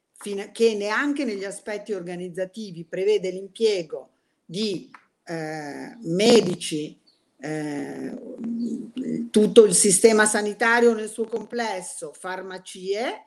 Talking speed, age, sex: 85 wpm, 50-69, female